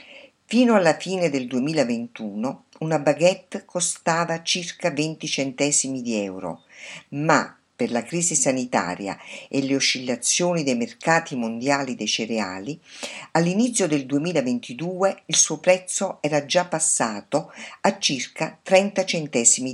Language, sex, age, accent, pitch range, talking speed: Italian, female, 50-69, native, 140-185 Hz, 120 wpm